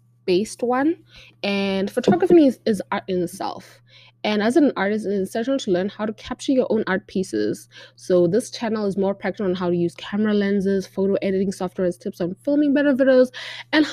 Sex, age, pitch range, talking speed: female, 20-39, 185-225 Hz, 200 wpm